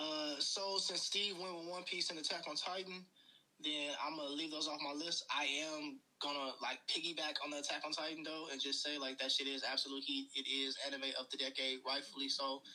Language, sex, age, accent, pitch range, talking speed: English, male, 20-39, American, 135-155 Hz, 225 wpm